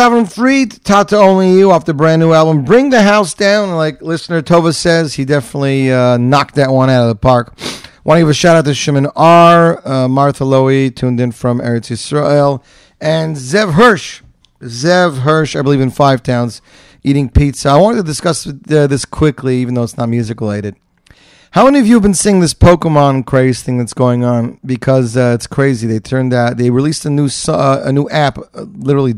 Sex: male